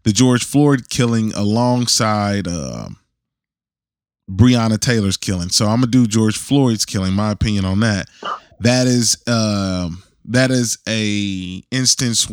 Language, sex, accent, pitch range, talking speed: English, male, American, 100-120 Hz, 135 wpm